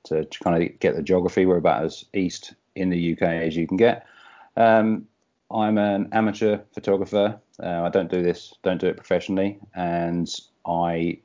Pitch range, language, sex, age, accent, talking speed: 85-95 Hz, English, male, 30-49, British, 175 wpm